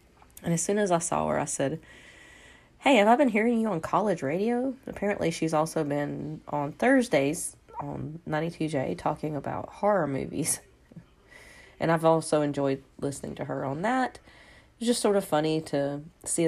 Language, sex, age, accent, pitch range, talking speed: English, female, 30-49, American, 140-185 Hz, 170 wpm